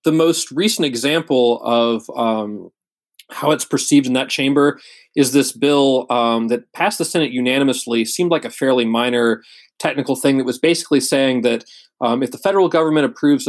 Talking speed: 175 wpm